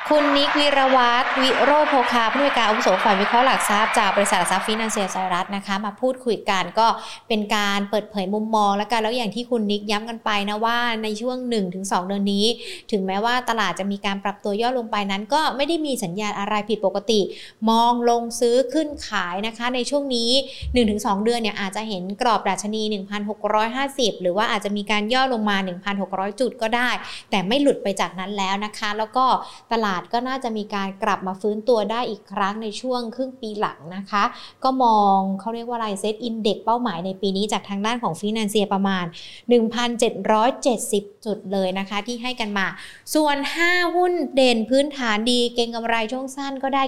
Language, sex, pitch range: Thai, female, 205-245 Hz